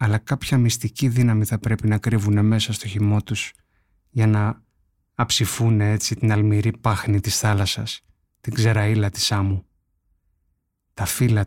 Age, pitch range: 30-49, 100-115 Hz